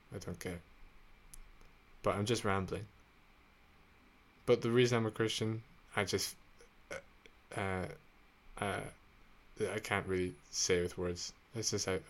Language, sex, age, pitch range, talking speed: English, male, 20-39, 90-105 Hz, 130 wpm